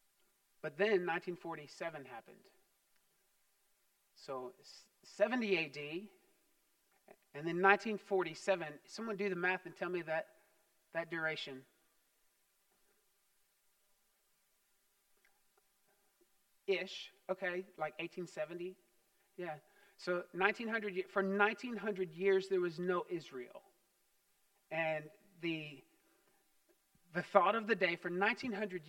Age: 40-59